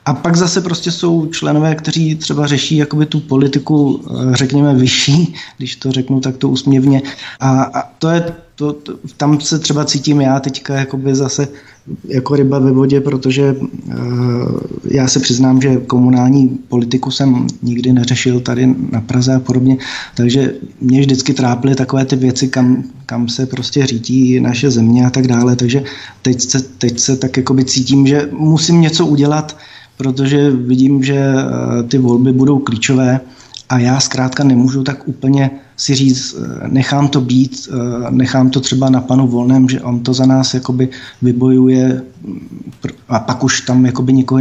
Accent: native